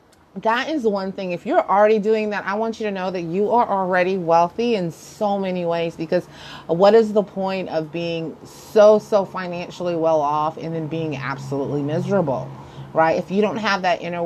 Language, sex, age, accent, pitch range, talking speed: English, female, 30-49, American, 155-185 Hz, 200 wpm